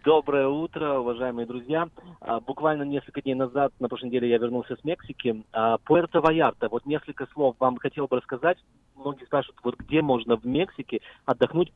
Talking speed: 170 wpm